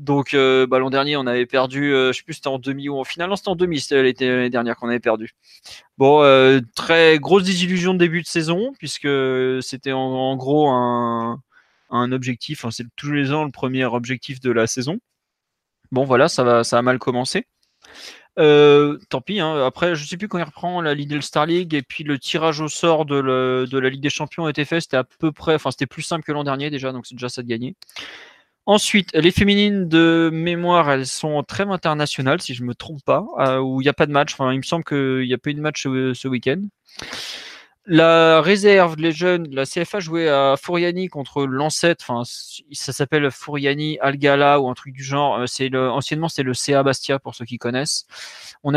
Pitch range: 130-165 Hz